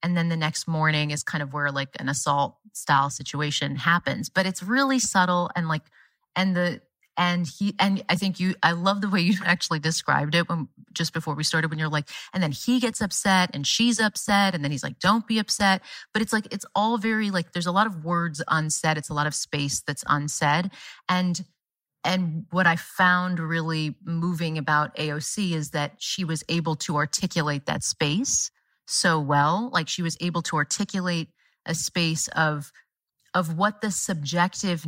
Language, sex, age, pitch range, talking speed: English, female, 30-49, 150-185 Hz, 195 wpm